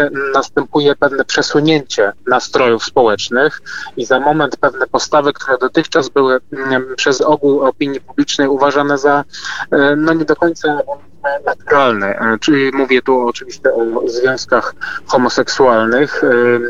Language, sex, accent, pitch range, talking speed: Polish, male, native, 120-145 Hz, 110 wpm